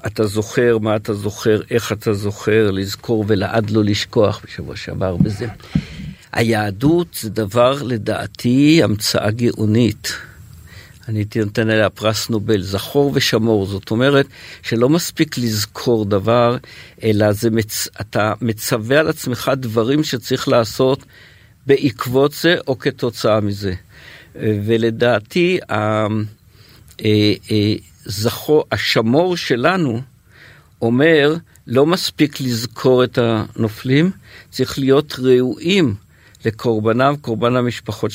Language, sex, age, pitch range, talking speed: Hebrew, male, 50-69, 110-135 Hz, 105 wpm